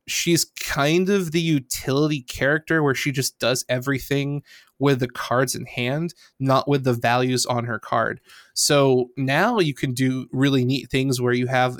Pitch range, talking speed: 125-150 Hz, 175 wpm